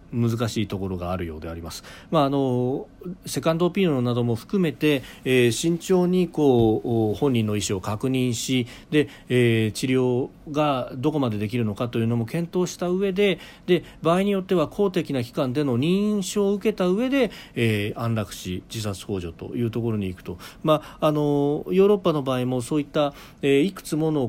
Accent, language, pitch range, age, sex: native, Japanese, 115-165 Hz, 40-59, male